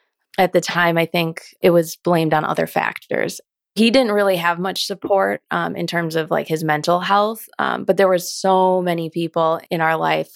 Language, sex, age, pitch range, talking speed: English, female, 20-39, 160-185 Hz, 205 wpm